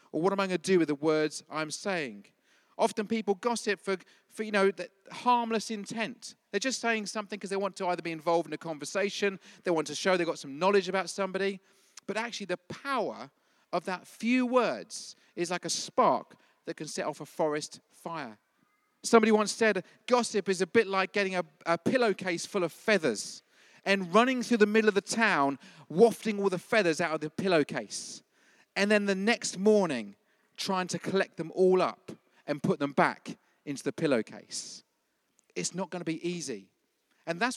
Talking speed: 195 wpm